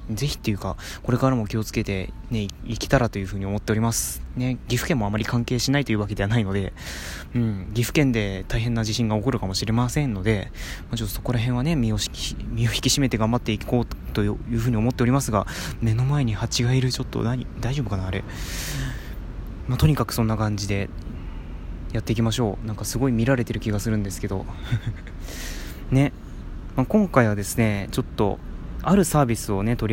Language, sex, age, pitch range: Japanese, male, 20-39, 100-130 Hz